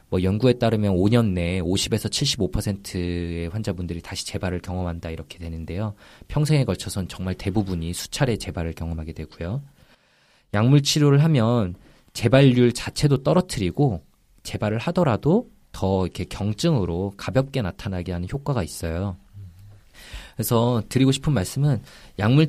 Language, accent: Korean, native